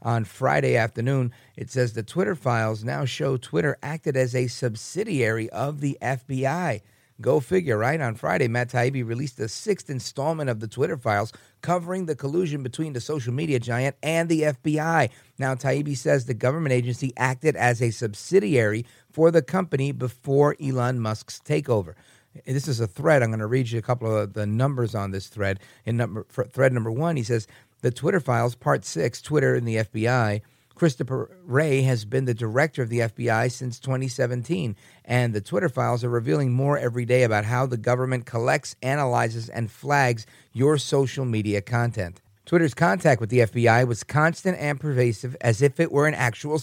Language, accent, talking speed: English, American, 180 wpm